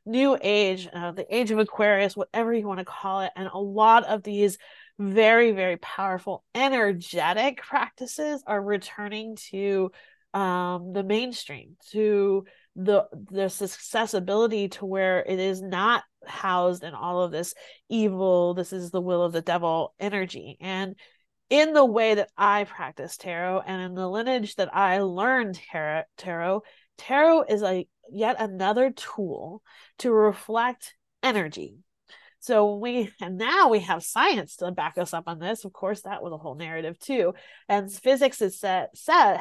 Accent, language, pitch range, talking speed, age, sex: American, English, 185-230 Hz, 155 wpm, 30-49, female